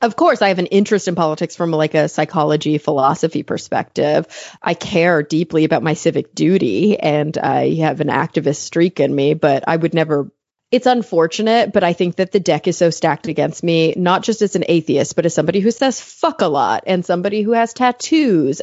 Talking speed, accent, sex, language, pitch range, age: 205 wpm, American, female, English, 155-190 Hz, 30-49